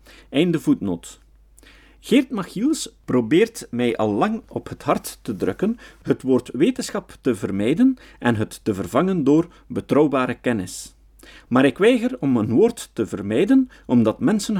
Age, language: 50-69, Dutch